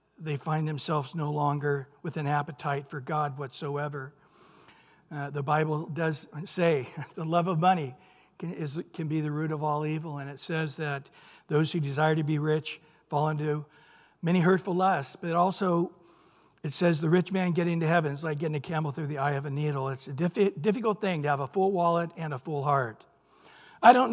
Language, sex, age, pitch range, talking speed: English, male, 60-79, 150-185 Hz, 195 wpm